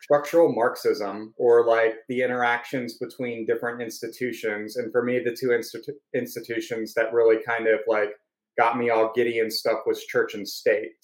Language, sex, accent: English, male, American